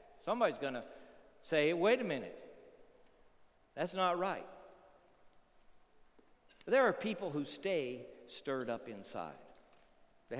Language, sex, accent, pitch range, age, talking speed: English, male, American, 125-195 Hz, 60-79, 110 wpm